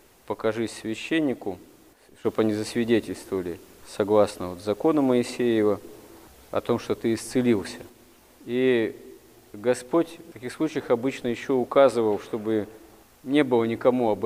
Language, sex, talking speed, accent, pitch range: Russian, male, 115 wpm, native, 105-125 Hz